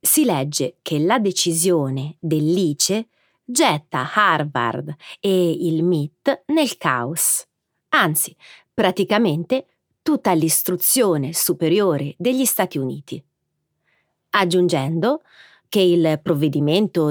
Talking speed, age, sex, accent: 90 wpm, 30-49, female, native